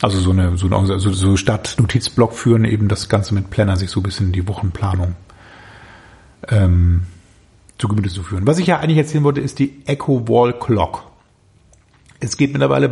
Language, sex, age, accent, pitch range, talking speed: German, male, 40-59, German, 110-140 Hz, 185 wpm